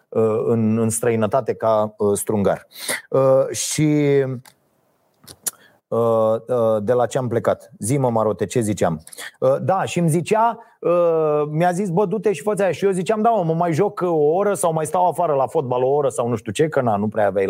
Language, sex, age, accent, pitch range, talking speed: Romanian, male, 30-49, native, 155-220 Hz, 200 wpm